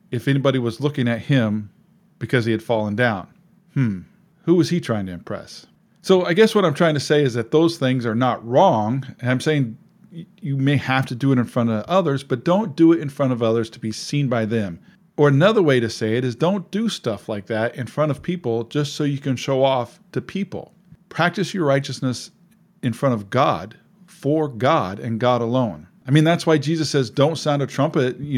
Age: 40-59